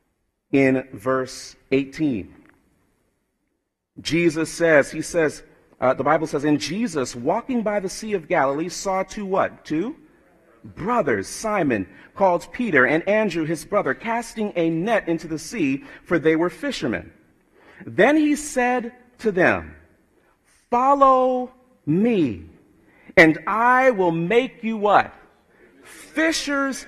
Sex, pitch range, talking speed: male, 155-210 Hz, 125 wpm